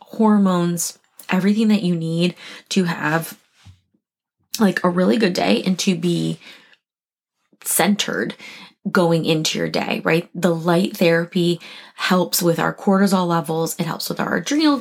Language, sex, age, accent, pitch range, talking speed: English, female, 20-39, American, 165-200 Hz, 140 wpm